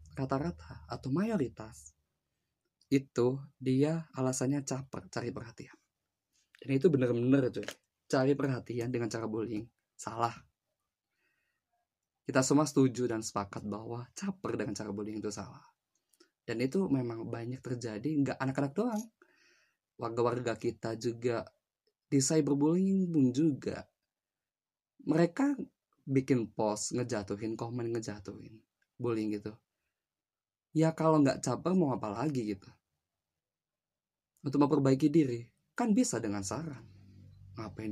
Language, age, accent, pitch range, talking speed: Indonesian, 20-39, native, 105-140 Hz, 110 wpm